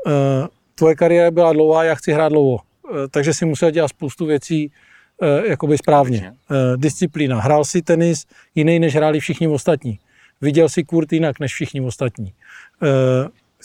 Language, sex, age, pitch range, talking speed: Czech, male, 40-59, 145-165 Hz, 160 wpm